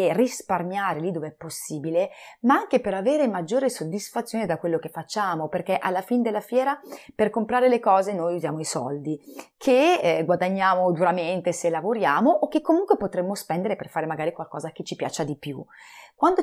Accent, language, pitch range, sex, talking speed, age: native, Italian, 170-240 Hz, female, 185 wpm, 30-49